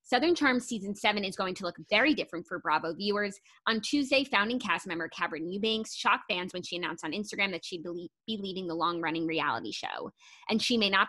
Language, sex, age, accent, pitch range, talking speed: English, female, 20-39, American, 180-235 Hz, 210 wpm